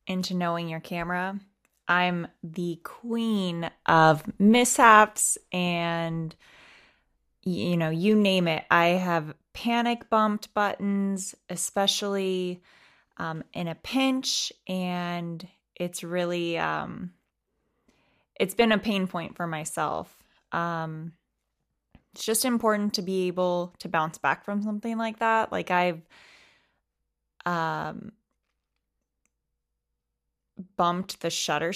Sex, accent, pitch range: female, American, 170-210 Hz